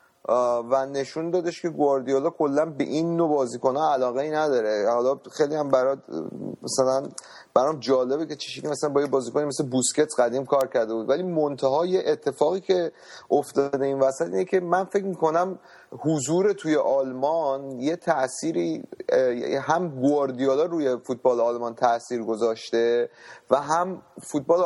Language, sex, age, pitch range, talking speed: Persian, male, 30-49, 130-165 Hz, 140 wpm